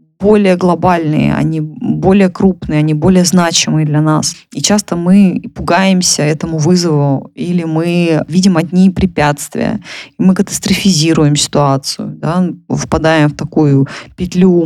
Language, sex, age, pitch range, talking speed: Russian, female, 20-39, 155-185 Hz, 125 wpm